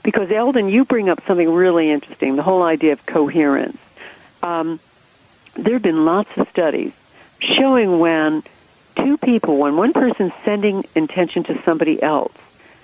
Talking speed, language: 150 wpm, English